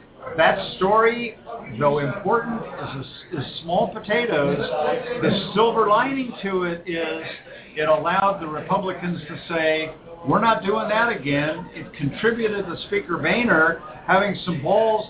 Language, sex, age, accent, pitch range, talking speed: English, male, 50-69, American, 150-190 Hz, 125 wpm